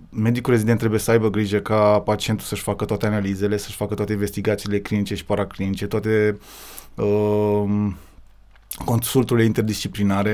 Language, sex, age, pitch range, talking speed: Romanian, male, 20-39, 105-120 Hz, 140 wpm